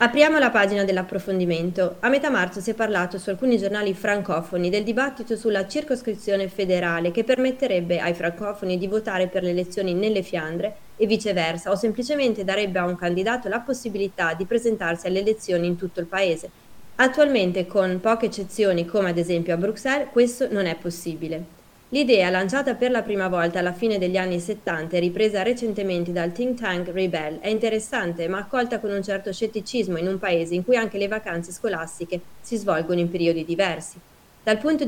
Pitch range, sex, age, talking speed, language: 180-230 Hz, female, 30-49, 175 wpm, Italian